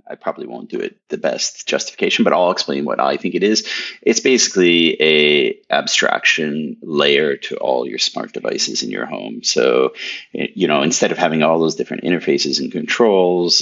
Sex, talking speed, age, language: male, 180 wpm, 30-49, English